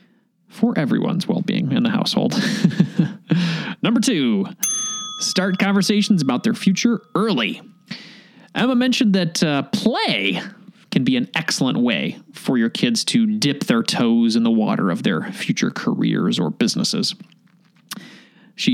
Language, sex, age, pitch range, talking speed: English, male, 30-49, 190-230 Hz, 130 wpm